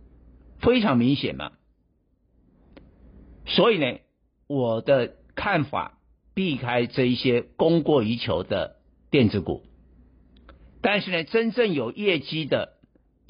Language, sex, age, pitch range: Chinese, male, 60-79, 100-155 Hz